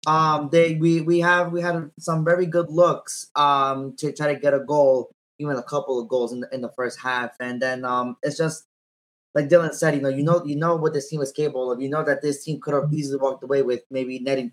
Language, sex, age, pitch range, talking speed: English, male, 20-39, 130-150 Hz, 250 wpm